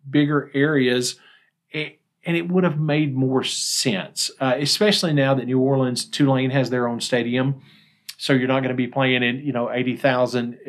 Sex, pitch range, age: male, 125-155 Hz, 40-59